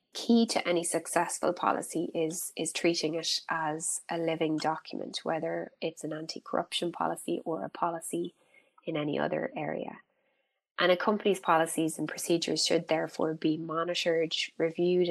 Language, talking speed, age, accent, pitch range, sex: English, 145 wpm, 20-39, Irish, 160-185 Hz, female